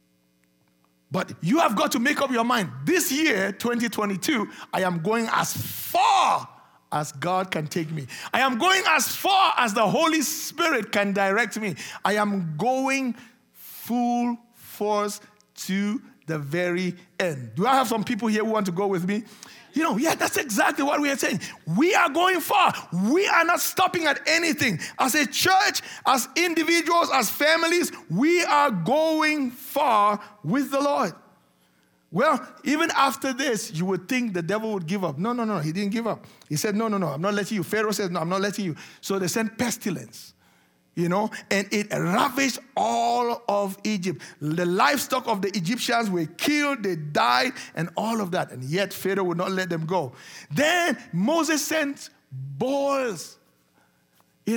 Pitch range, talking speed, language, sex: 180-260 Hz, 175 wpm, English, male